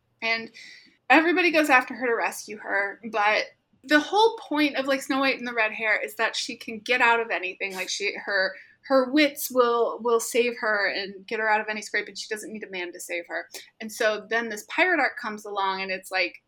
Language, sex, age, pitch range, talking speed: English, female, 20-39, 215-300 Hz, 235 wpm